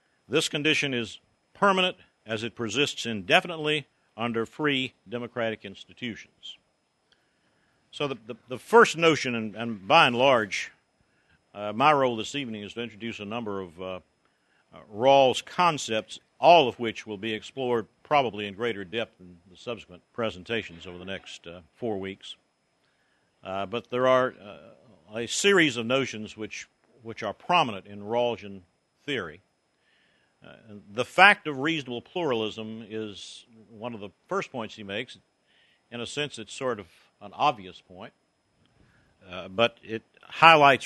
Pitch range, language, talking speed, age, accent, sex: 105-135 Hz, English, 150 wpm, 50-69, American, male